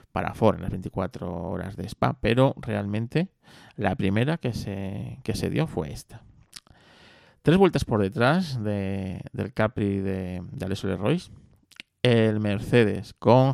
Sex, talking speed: male, 145 wpm